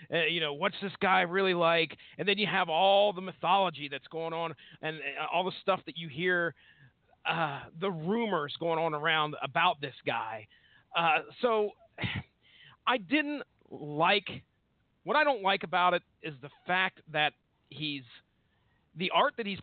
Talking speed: 170 wpm